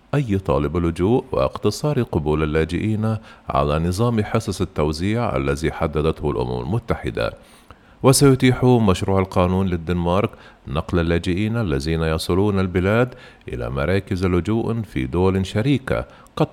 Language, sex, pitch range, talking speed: Arabic, male, 85-115 Hz, 110 wpm